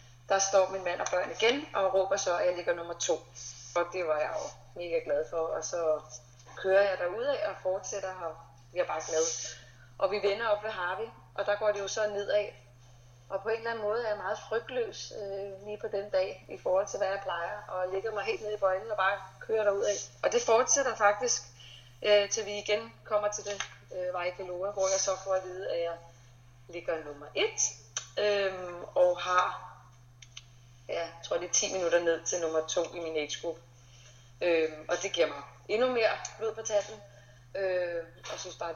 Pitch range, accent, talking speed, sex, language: 150-200 Hz, native, 210 wpm, female, Danish